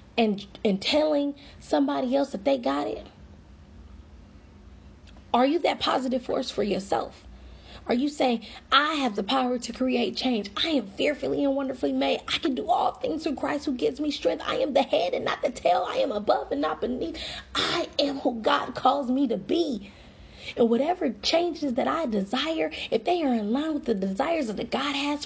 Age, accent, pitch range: 30-49, American, 175-275 Hz